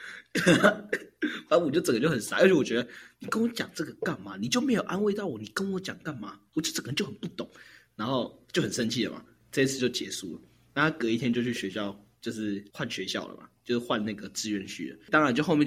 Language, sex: Chinese, male